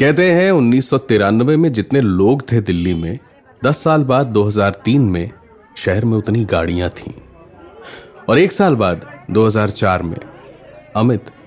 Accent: native